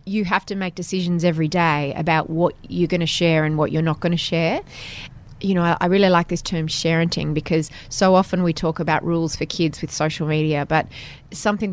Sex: female